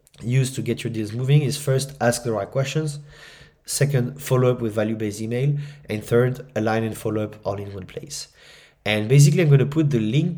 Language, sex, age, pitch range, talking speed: English, male, 30-49, 115-145 Hz, 215 wpm